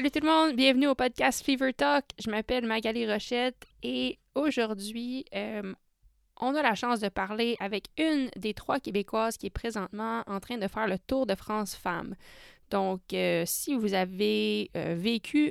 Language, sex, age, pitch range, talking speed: French, female, 20-39, 185-230 Hz, 175 wpm